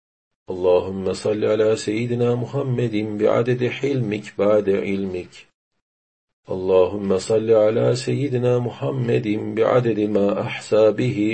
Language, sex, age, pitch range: Turkish, male, 50-69, 95-115 Hz